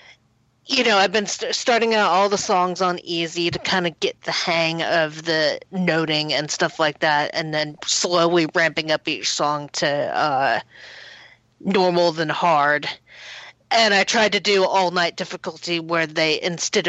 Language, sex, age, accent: English, female, 40-59, American